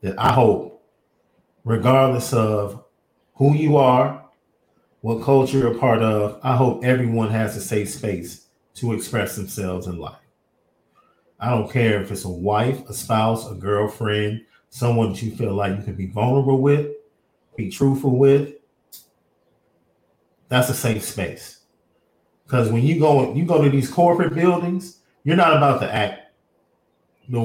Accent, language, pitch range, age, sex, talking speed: American, English, 105-130 Hz, 40-59, male, 150 wpm